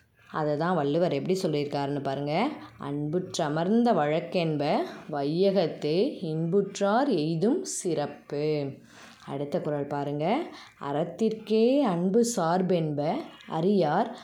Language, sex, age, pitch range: English, female, 20-39, 150-215 Hz